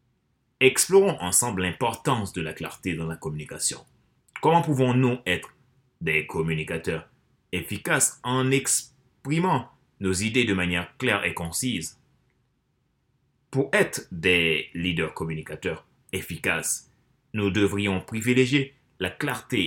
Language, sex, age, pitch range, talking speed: French, male, 30-49, 90-130 Hz, 105 wpm